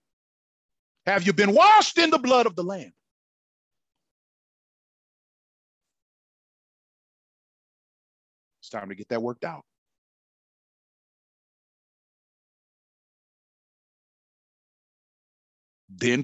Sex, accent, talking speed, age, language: male, American, 65 wpm, 40-59, English